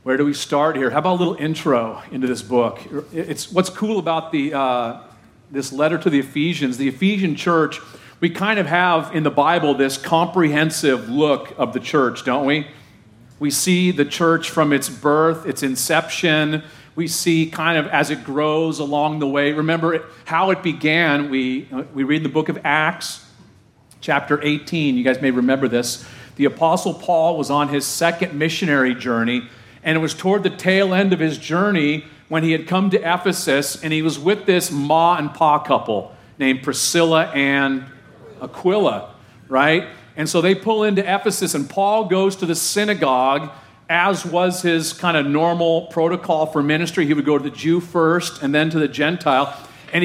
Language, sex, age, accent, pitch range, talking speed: English, male, 40-59, American, 140-175 Hz, 180 wpm